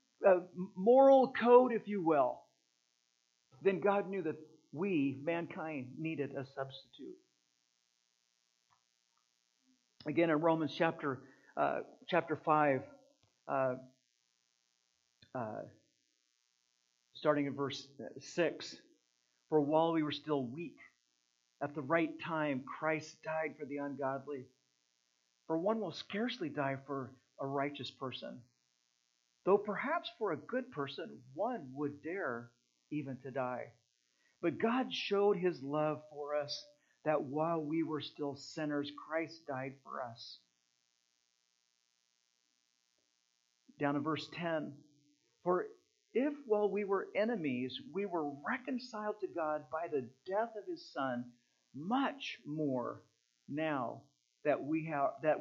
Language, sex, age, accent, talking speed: English, male, 50-69, American, 115 wpm